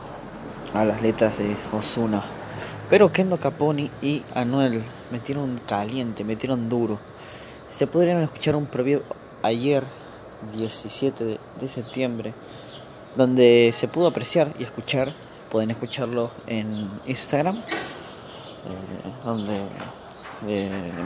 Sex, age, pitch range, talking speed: male, 20-39, 110-160 Hz, 105 wpm